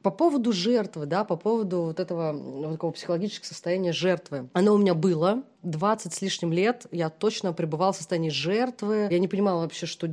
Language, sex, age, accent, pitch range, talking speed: Russian, female, 30-49, native, 170-215 Hz, 190 wpm